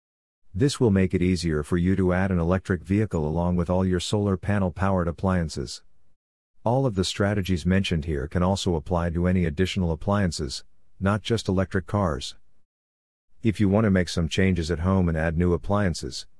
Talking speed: 185 wpm